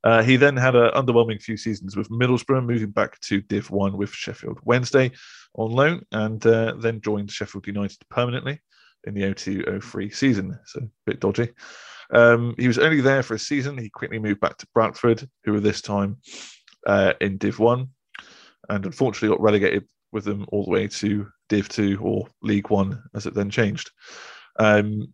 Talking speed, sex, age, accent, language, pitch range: 190 wpm, male, 20-39, British, English, 100-120 Hz